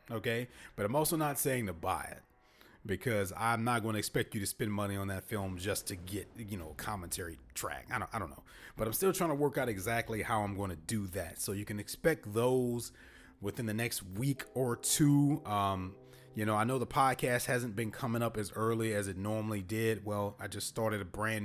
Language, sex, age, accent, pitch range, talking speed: English, male, 30-49, American, 100-130 Hz, 230 wpm